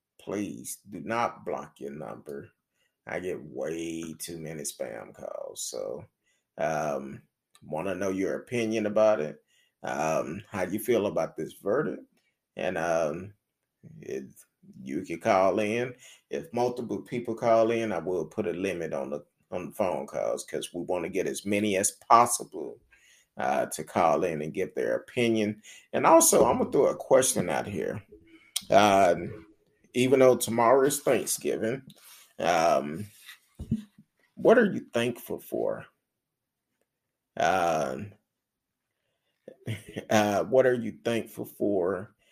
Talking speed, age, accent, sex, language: 140 wpm, 30-49, American, male, English